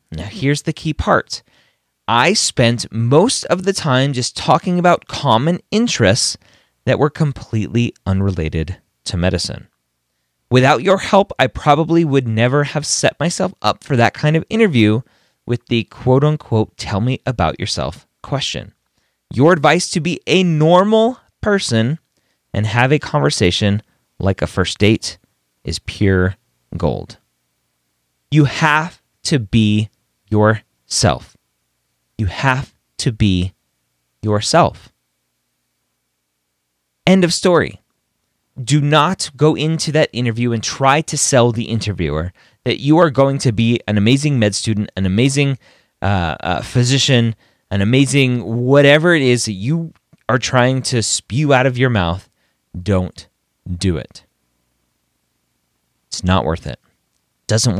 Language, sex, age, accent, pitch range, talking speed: English, male, 30-49, American, 90-145 Hz, 130 wpm